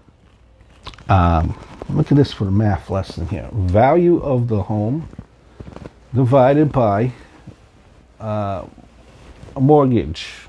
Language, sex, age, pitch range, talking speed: English, male, 50-69, 105-145 Hz, 95 wpm